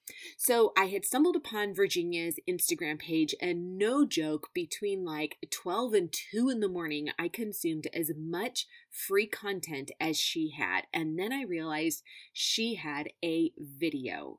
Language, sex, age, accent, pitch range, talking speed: English, female, 30-49, American, 160-265 Hz, 150 wpm